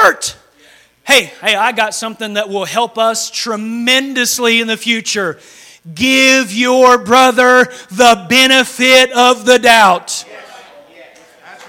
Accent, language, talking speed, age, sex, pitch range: American, English, 115 wpm, 40-59, male, 235-355 Hz